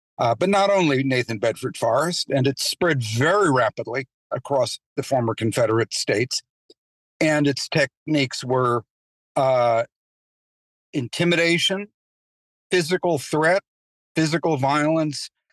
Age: 50-69